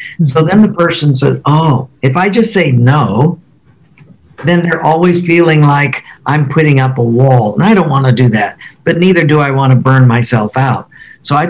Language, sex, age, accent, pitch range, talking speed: English, male, 50-69, American, 125-155 Hz, 205 wpm